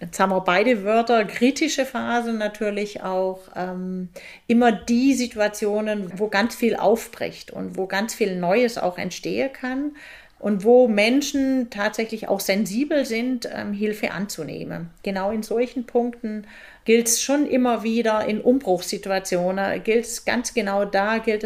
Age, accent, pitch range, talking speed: 40-59, German, 195-235 Hz, 145 wpm